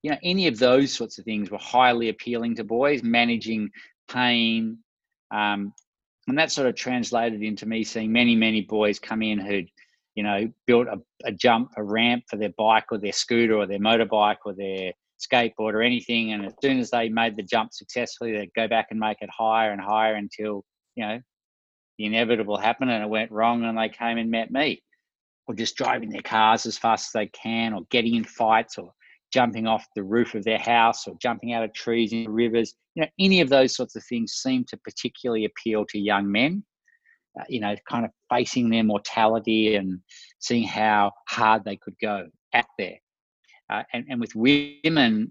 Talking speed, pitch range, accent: 200 wpm, 110-120 Hz, Australian